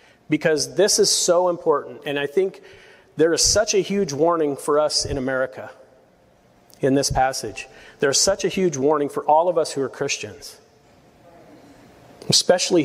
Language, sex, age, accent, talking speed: English, male, 40-59, American, 165 wpm